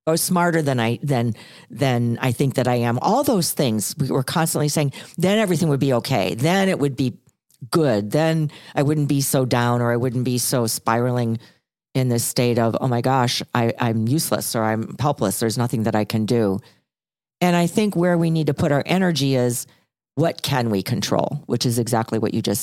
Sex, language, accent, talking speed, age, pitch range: female, English, American, 210 wpm, 50-69, 115-150 Hz